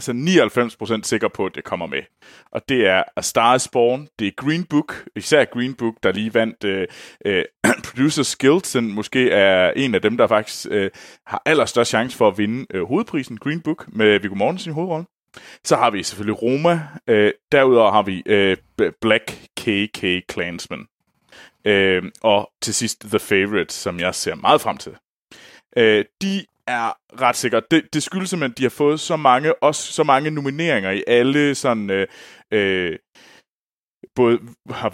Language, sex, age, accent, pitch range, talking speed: Danish, male, 30-49, native, 105-145 Hz, 175 wpm